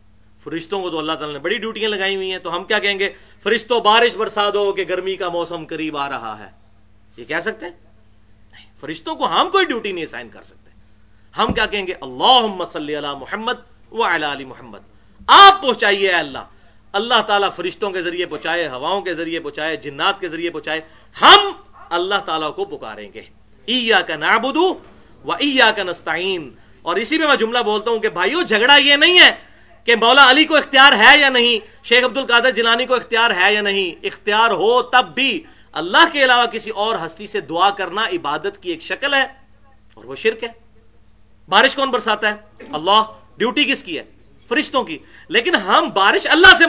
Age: 40-59